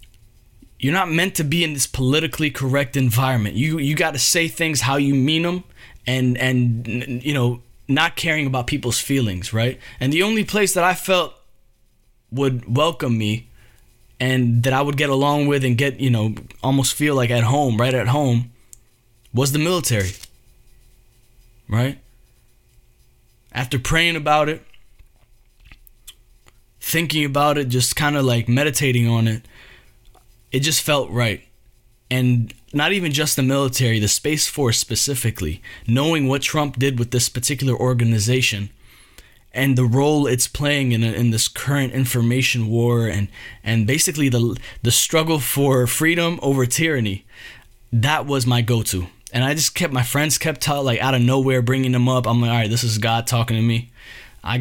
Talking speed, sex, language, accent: 165 wpm, male, English, American